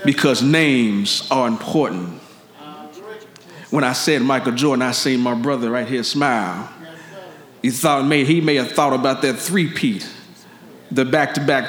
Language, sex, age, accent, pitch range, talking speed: English, male, 40-59, American, 135-195 Hz, 140 wpm